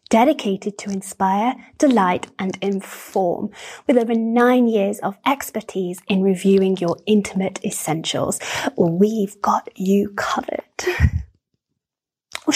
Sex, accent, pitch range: female, British, 205-275 Hz